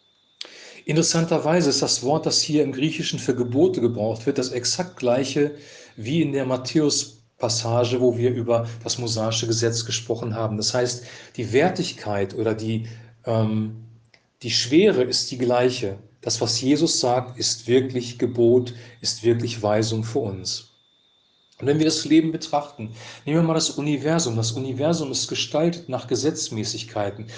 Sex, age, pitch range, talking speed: male, 40-59, 115-155 Hz, 150 wpm